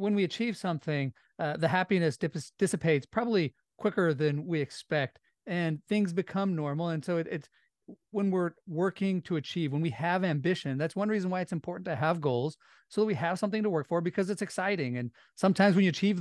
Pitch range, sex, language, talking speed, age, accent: 140-180 Hz, male, English, 205 wpm, 40-59, American